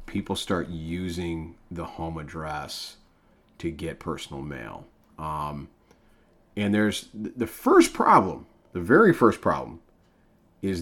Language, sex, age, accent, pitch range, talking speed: English, male, 30-49, American, 80-95 Hz, 115 wpm